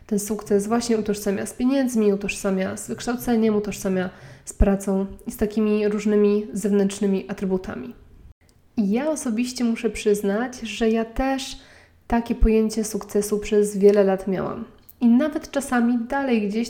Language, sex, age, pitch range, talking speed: Polish, female, 20-39, 205-240 Hz, 135 wpm